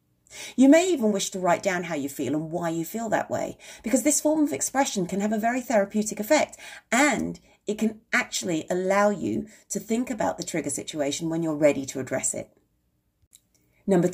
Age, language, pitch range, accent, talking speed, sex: 40-59, English, 185-275 Hz, British, 195 wpm, female